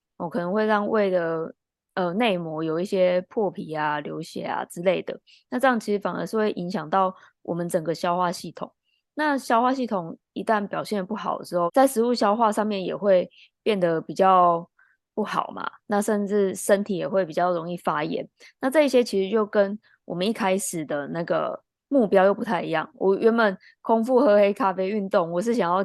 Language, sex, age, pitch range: Chinese, female, 20-39, 180-220 Hz